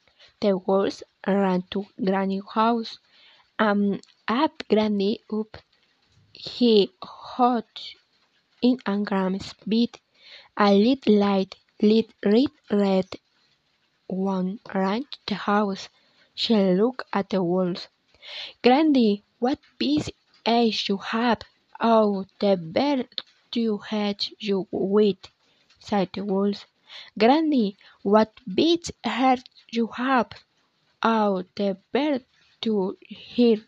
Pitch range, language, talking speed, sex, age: 200-240 Hz, Amharic, 110 wpm, female, 20-39